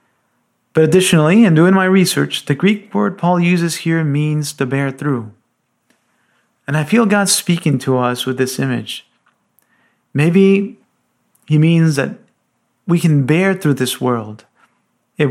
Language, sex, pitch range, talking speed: English, male, 130-165 Hz, 145 wpm